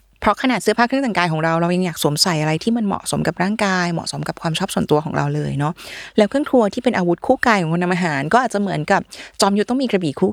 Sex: female